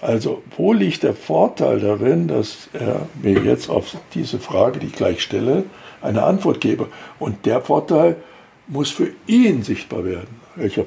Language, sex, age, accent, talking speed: German, male, 60-79, German, 160 wpm